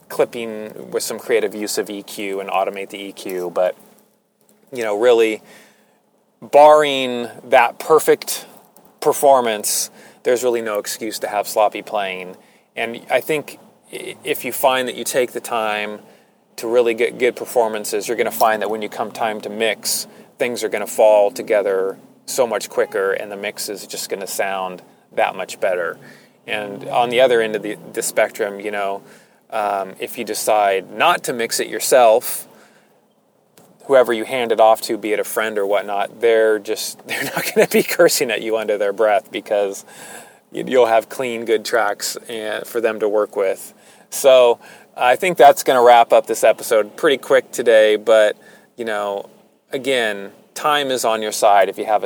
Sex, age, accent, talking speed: male, 30-49, American, 180 wpm